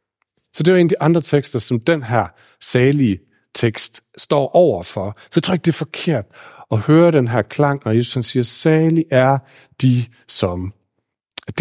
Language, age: Danish, 40-59